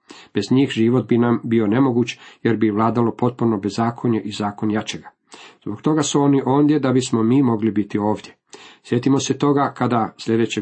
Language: Croatian